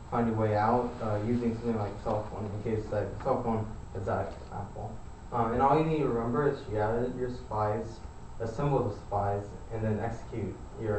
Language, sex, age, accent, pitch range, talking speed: English, male, 10-29, American, 105-115 Hz, 205 wpm